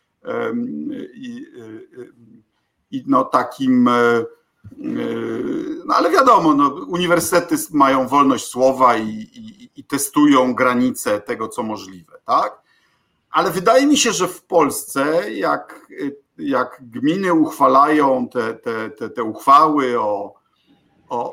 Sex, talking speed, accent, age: male, 115 wpm, native, 50-69